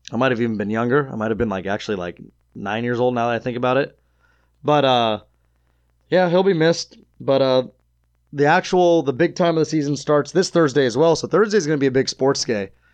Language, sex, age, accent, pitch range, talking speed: English, male, 20-39, American, 110-150 Hz, 245 wpm